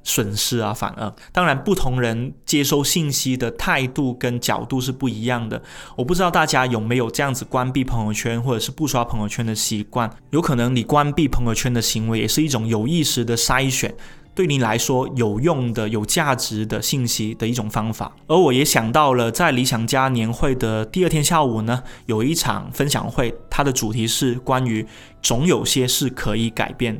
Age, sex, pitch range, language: 20-39, male, 115-145 Hz, Chinese